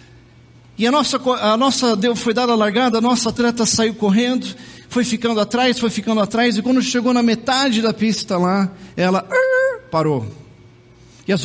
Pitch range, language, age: 140-225 Hz, Portuguese, 40-59